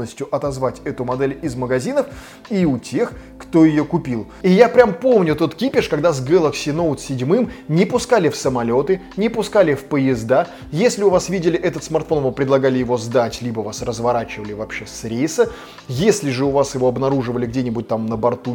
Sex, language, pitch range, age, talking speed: male, Russian, 125-165 Hz, 20-39, 180 wpm